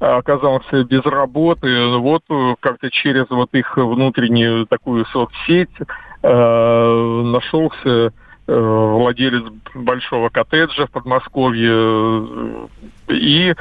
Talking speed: 90 wpm